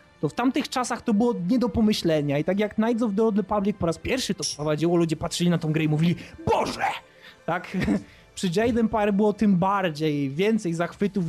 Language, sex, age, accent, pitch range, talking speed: Polish, male, 20-39, native, 165-210 Hz, 215 wpm